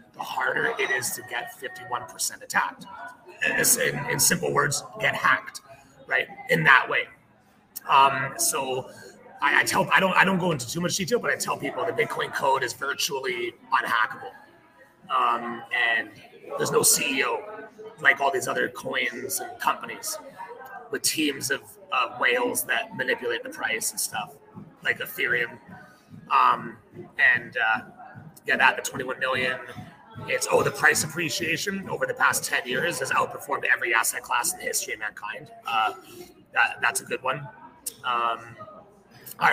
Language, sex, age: English, male, 30-49